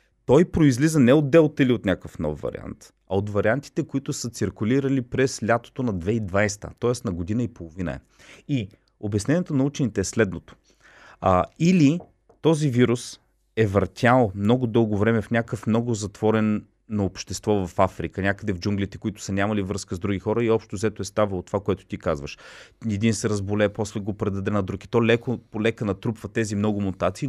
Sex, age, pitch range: male, 30-49, 100-125 Hz